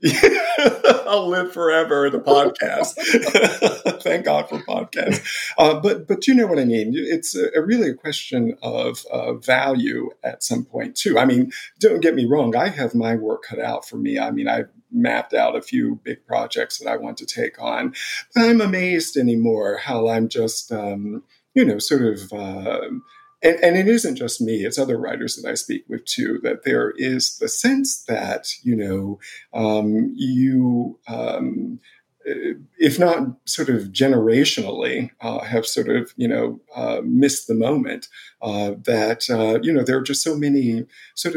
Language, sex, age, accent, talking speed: English, male, 50-69, American, 180 wpm